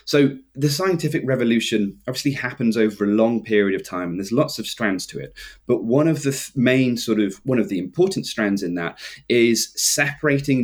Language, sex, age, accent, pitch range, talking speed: English, male, 20-39, British, 110-135 Hz, 195 wpm